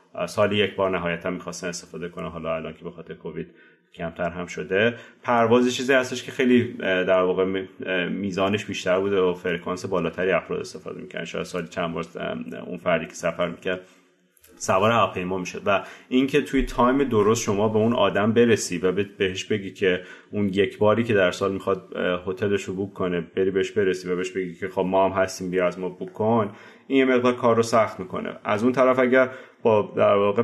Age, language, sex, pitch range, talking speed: 30-49, Persian, male, 95-115 Hz, 195 wpm